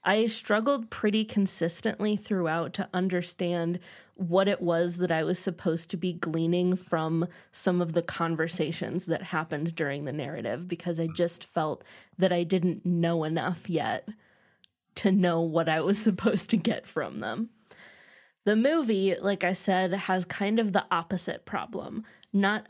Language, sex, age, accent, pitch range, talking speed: English, female, 20-39, American, 170-205 Hz, 155 wpm